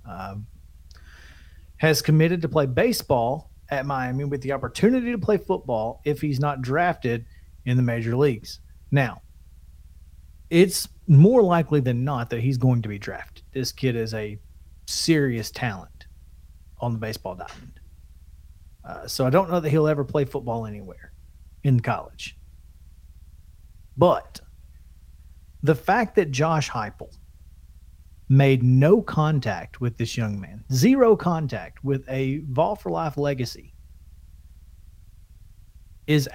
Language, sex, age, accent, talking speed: English, male, 40-59, American, 130 wpm